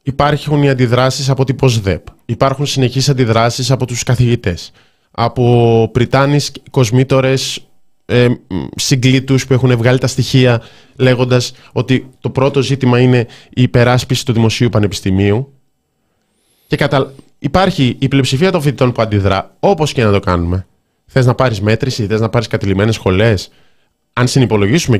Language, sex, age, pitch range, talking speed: Greek, male, 20-39, 100-130 Hz, 135 wpm